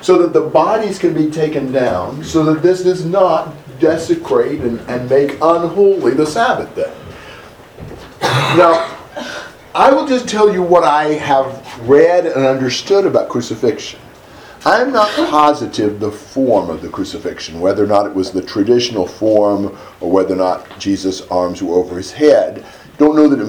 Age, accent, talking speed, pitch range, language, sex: 50-69, American, 170 wpm, 105-160 Hz, English, male